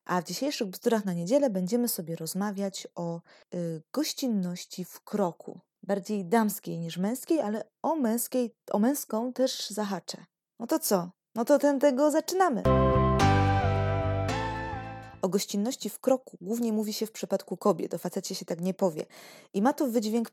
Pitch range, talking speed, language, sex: 175-240 Hz, 155 wpm, Polish, female